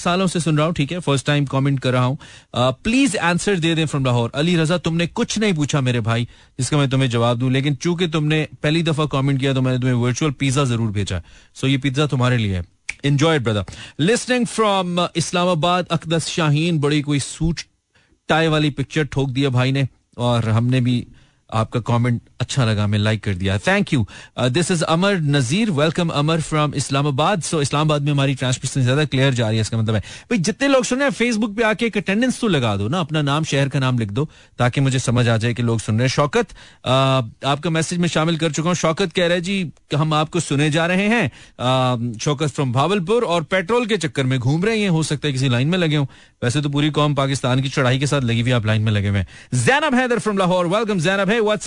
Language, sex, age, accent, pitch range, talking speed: Hindi, male, 30-49, native, 130-175 Hz, 180 wpm